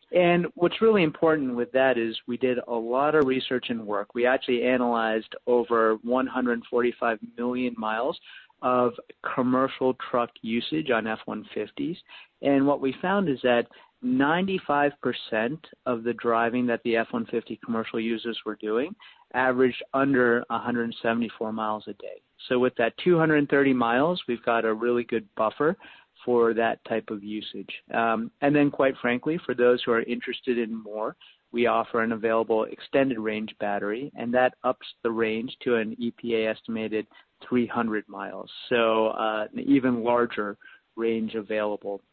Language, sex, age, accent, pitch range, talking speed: English, male, 50-69, American, 115-125 Hz, 150 wpm